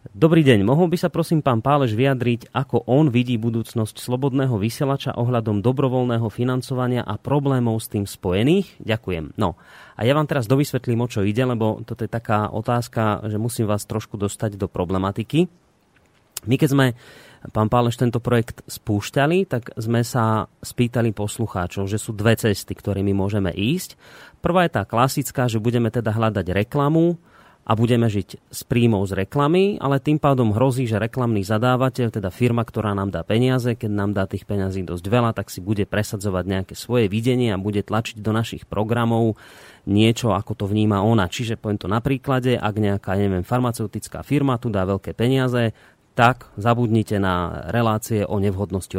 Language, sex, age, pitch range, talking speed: Slovak, male, 30-49, 105-130 Hz, 170 wpm